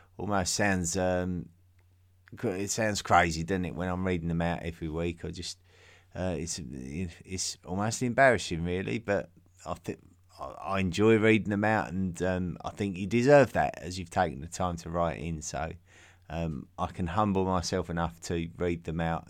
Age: 30-49